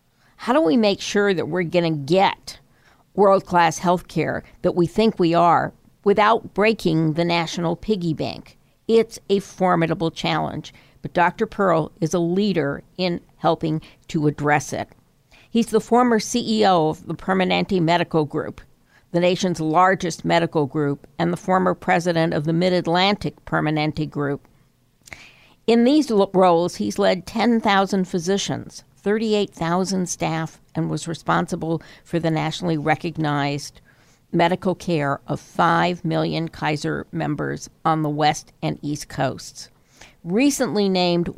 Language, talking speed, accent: English, 135 wpm, American